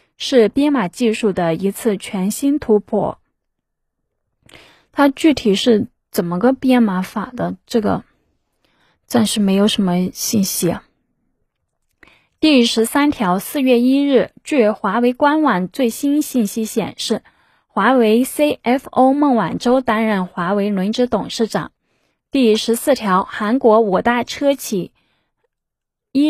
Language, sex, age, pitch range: Chinese, female, 20-39, 205-265 Hz